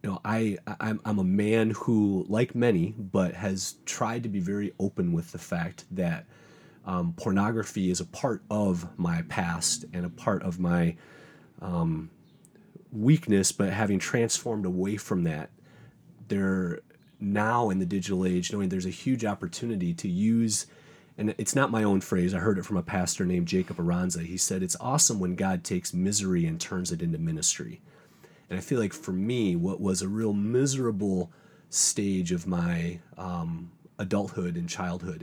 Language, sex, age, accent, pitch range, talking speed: English, male, 30-49, American, 90-115 Hz, 170 wpm